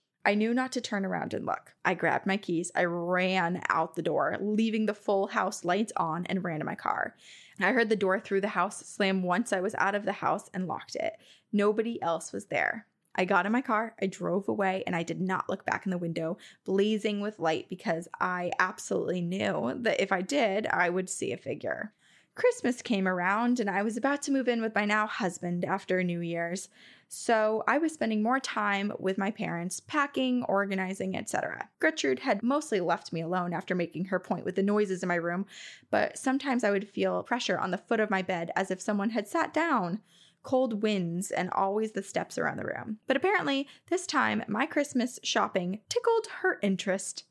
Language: English